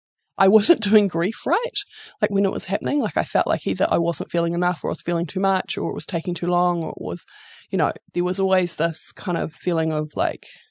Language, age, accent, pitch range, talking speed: English, 20-39, Australian, 175-215 Hz, 250 wpm